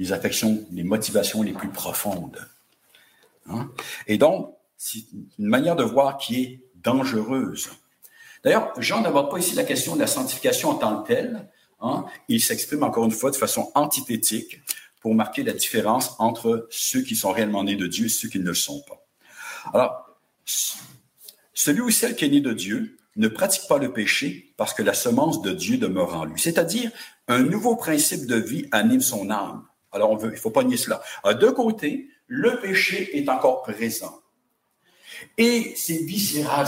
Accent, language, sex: French, English, male